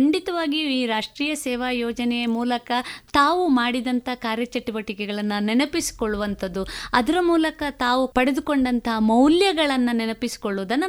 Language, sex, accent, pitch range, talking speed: Kannada, female, native, 220-295 Hz, 90 wpm